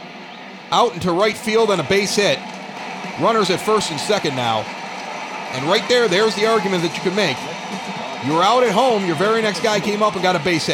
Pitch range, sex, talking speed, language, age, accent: 170-215 Hz, male, 210 wpm, English, 40-59, American